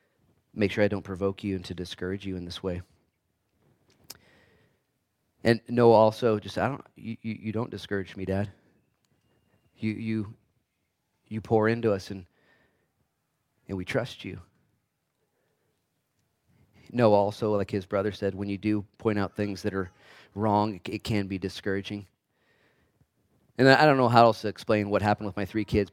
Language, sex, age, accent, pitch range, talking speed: English, male, 30-49, American, 95-110 Hz, 160 wpm